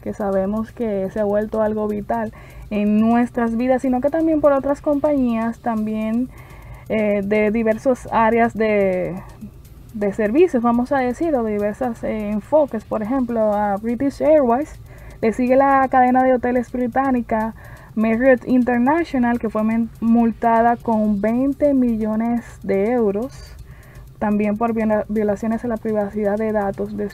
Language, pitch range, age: Spanish, 215-255 Hz, 20-39